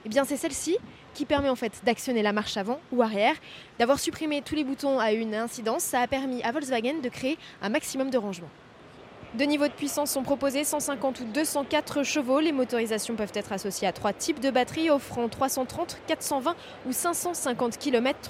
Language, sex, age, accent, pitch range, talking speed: French, female, 20-39, French, 210-285 Hz, 195 wpm